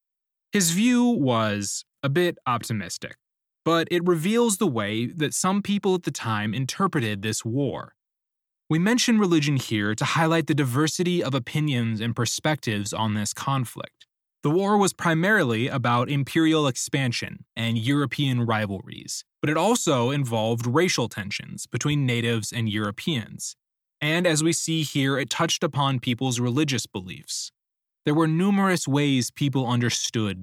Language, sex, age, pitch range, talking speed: English, male, 20-39, 115-165 Hz, 140 wpm